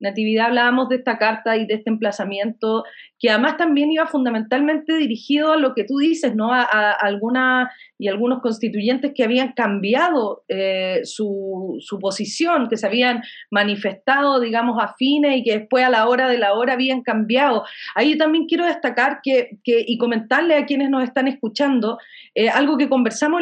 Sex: female